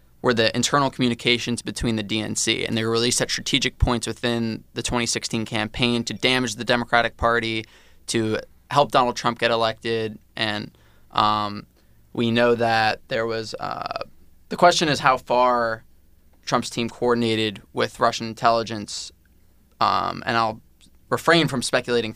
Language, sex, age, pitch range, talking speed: English, male, 20-39, 110-120 Hz, 145 wpm